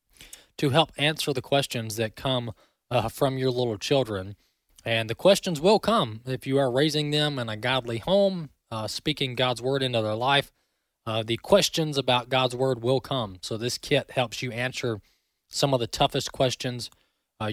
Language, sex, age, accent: English, male, 20-39, American